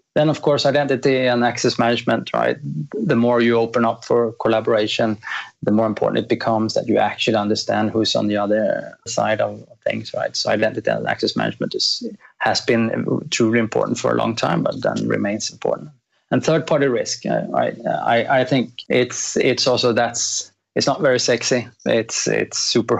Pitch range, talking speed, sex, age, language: 105-120 Hz, 180 wpm, male, 30-49, English